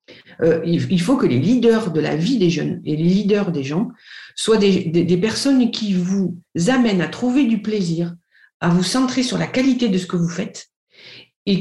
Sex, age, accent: female, 50-69, French